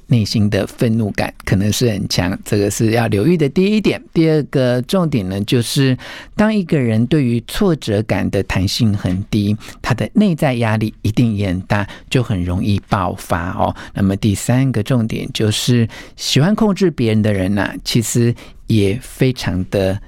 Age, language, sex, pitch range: 50-69, Chinese, male, 105-135 Hz